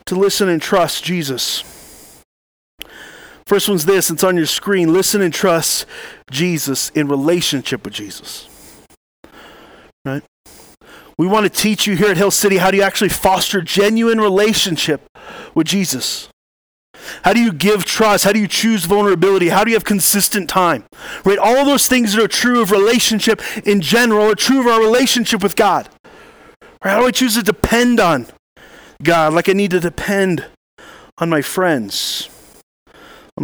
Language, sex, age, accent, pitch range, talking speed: English, male, 30-49, American, 160-210 Hz, 165 wpm